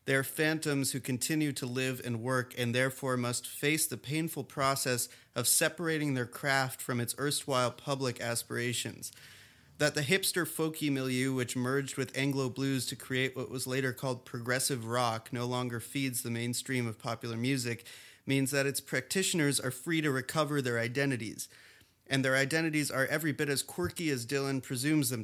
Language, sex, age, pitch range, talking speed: English, male, 30-49, 120-140 Hz, 175 wpm